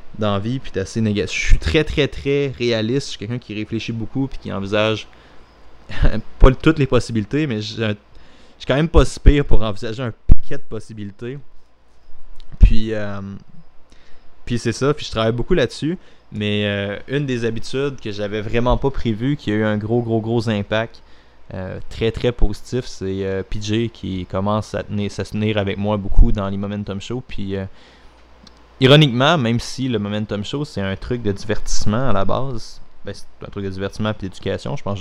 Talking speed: 195 wpm